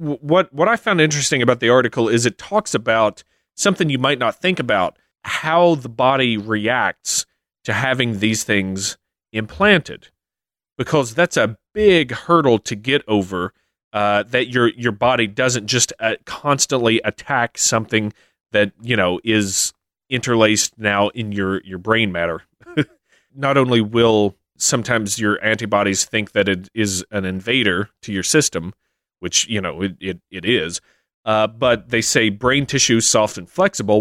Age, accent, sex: 30-49, American, male